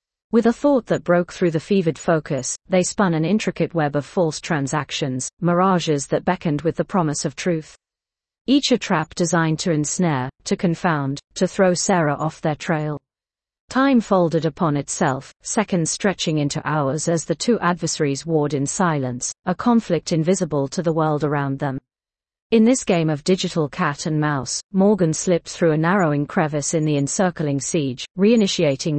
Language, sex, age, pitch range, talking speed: English, female, 40-59, 150-185 Hz, 170 wpm